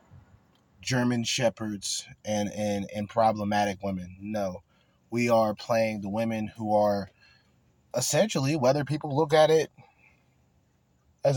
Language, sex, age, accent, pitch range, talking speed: English, male, 20-39, American, 100-125 Hz, 115 wpm